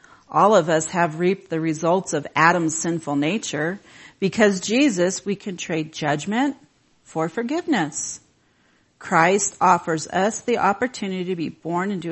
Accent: American